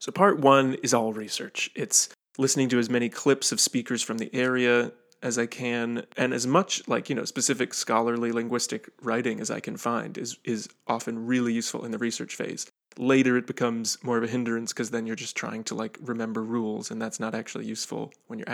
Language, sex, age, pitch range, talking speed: English, male, 30-49, 115-130 Hz, 215 wpm